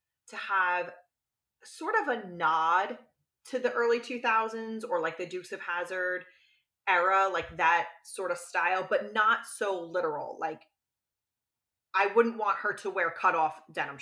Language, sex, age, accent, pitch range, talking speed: English, female, 30-49, American, 175-240 Hz, 155 wpm